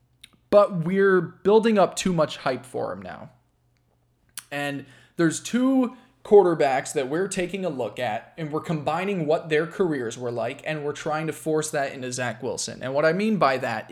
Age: 20-39